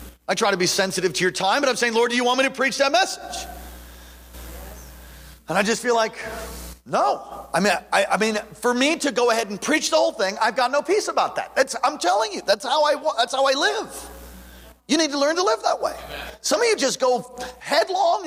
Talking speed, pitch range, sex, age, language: 235 wpm, 220-330 Hz, male, 40-59, English